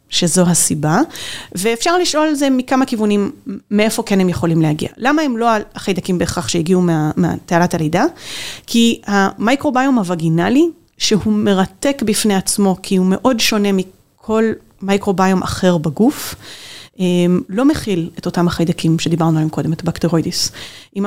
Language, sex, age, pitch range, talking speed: Hebrew, female, 30-49, 175-230 Hz, 135 wpm